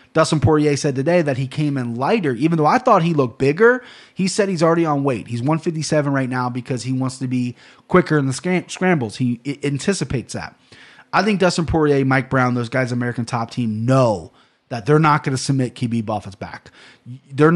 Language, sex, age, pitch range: English, male, 30-49, 130-160 Hz